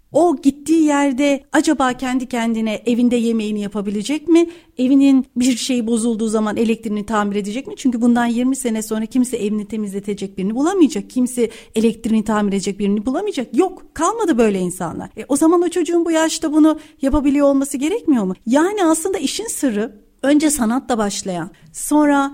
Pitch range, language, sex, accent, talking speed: 210-295 Hz, Turkish, female, native, 160 wpm